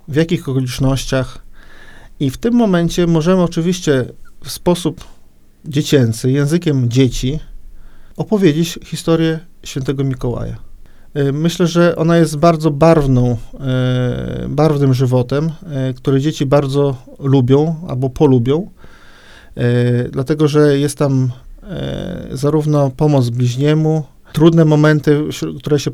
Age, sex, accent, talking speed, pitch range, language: 40-59, male, native, 100 wpm, 130-160 Hz, Polish